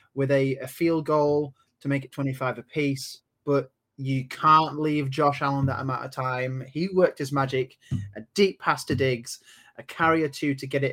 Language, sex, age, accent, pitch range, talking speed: English, male, 20-39, British, 125-160 Hz, 190 wpm